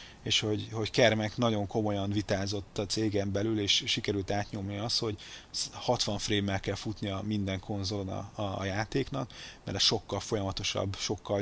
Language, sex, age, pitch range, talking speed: Hungarian, male, 30-49, 100-115 Hz, 145 wpm